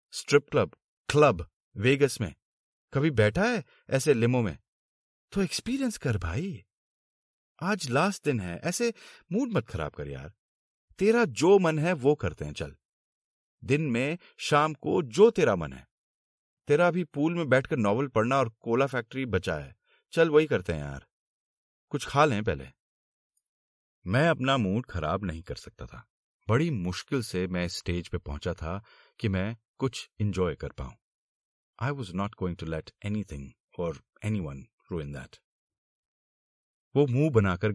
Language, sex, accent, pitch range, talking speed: Hindi, male, native, 90-145 Hz, 155 wpm